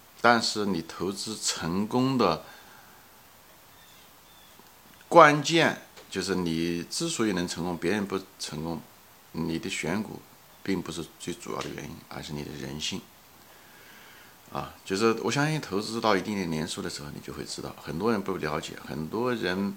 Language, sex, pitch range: Chinese, male, 80-100 Hz